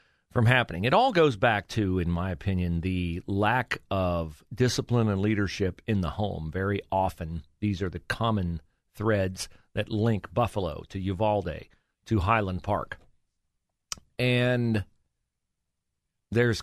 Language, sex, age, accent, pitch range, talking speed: English, male, 40-59, American, 95-125 Hz, 130 wpm